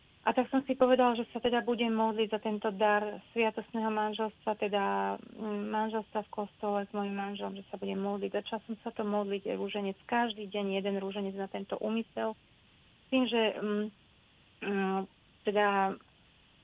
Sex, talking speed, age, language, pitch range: female, 160 wpm, 30-49, Slovak, 200-220 Hz